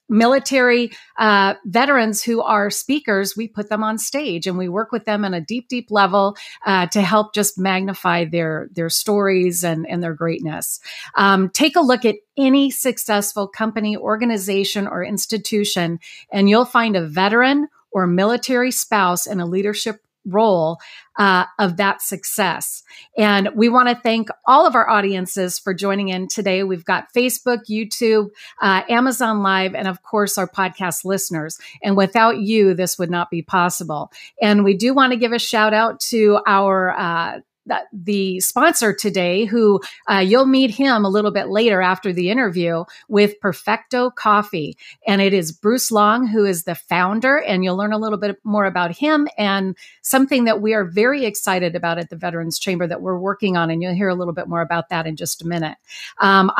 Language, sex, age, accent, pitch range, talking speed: English, female, 40-59, American, 185-230 Hz, 185 wpm